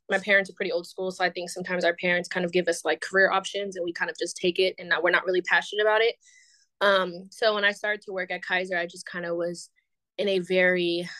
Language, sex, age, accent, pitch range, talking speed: English, female, 20-39, American, 175-210 Hz, 275 wpm